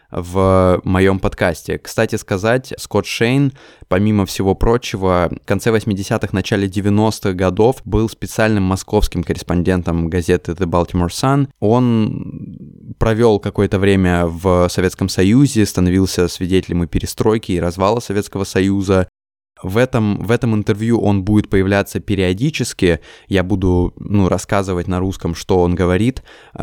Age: 20-39